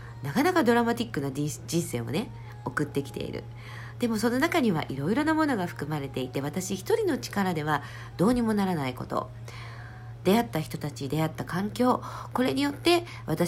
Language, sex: Japanese, female